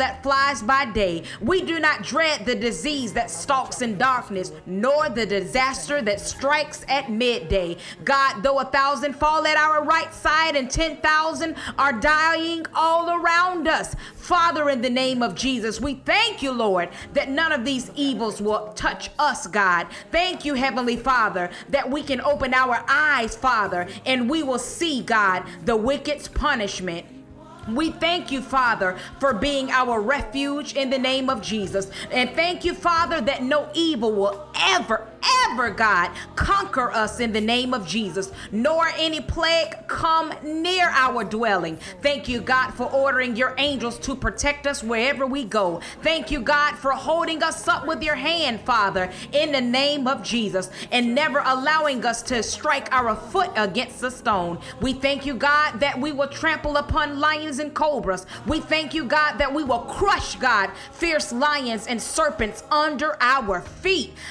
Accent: American